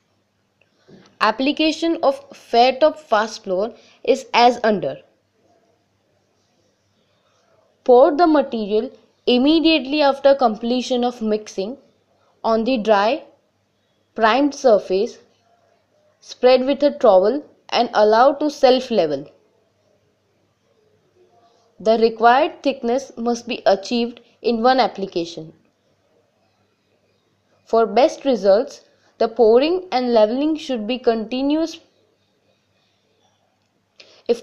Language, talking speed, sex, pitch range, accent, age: English, 85 wpm, female, 220-280 Hz, Indian, 20-39